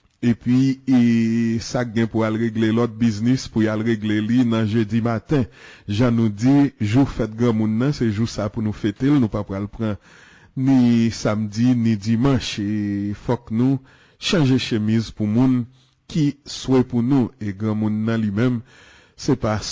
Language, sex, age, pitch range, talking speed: English, male, 30-49, 110-130 Hz, 175 wpm